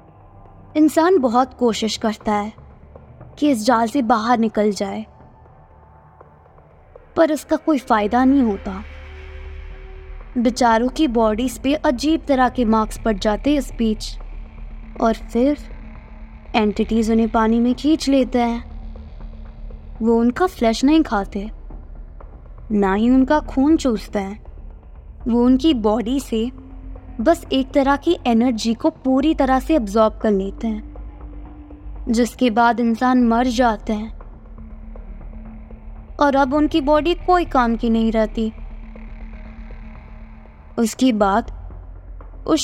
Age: 20-39